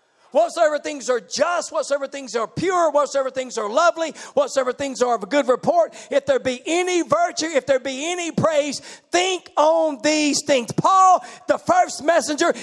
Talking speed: 175 wpm